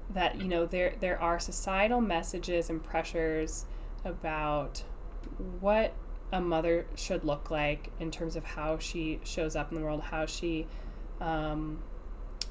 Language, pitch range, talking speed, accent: English, 155-180 Hz, 145 wpm, American